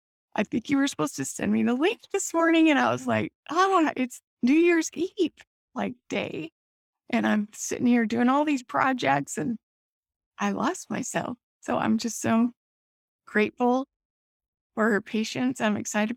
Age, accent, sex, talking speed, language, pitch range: 20-39, American, female, 165 wpm, English, 215-255 Hz